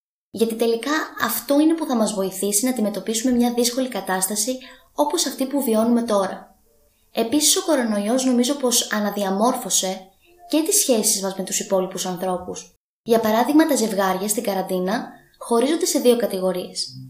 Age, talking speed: 20-39, 145 wpm